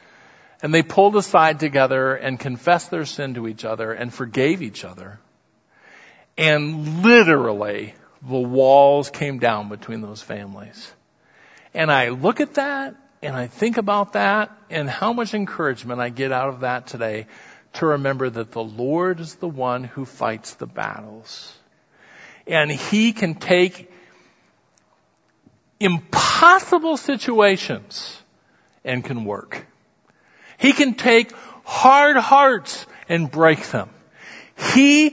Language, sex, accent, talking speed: English, male, American, 130 wpm